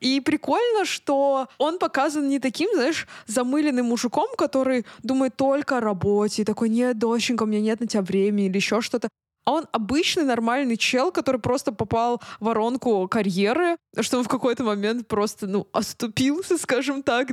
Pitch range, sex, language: 220-275 Hz, female, Russian